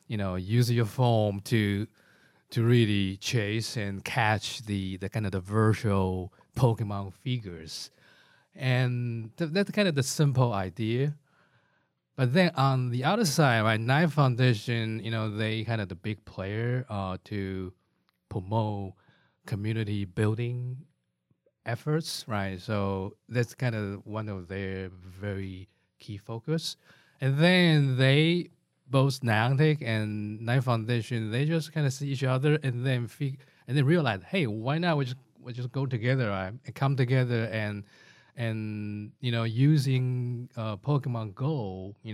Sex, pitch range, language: male, 105-135 Hz, English